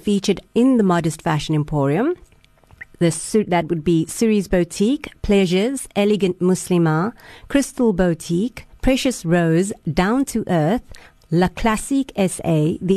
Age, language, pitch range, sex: 30-49, English, 165-215 Hz, female